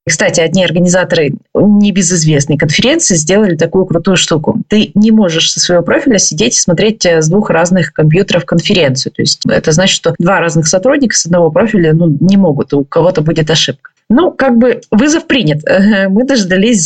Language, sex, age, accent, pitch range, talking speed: Russian, female, 20-39, native, 170-220 Hz, 170 wpm